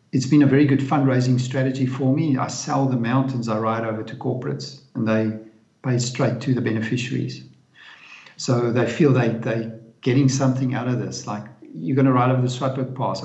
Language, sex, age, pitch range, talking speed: English, male, 50-69, 115-135 Hz, 200 wpm